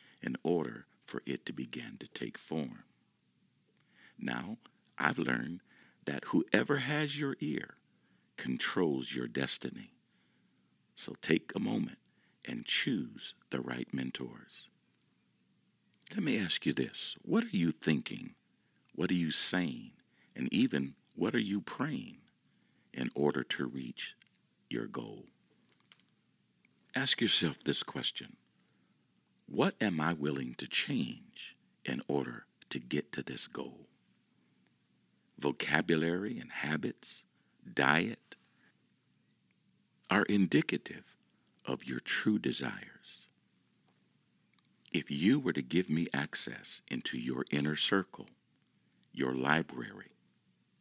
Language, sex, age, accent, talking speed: English, male, 60-79, American, 110 wpm